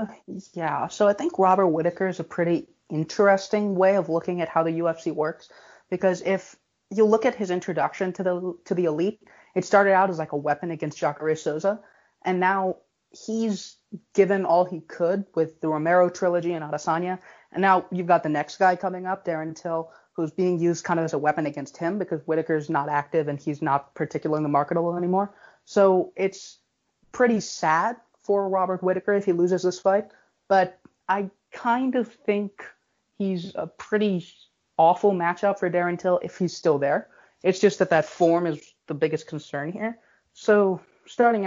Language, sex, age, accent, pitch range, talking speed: English, female, 20-39, American, 160-195 Hz, 180 wpm